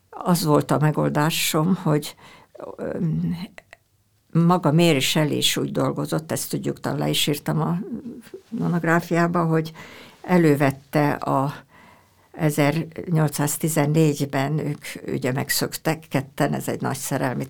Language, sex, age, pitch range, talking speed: Hungarian, female, 60-79, 140-160 Hz, 100 wpm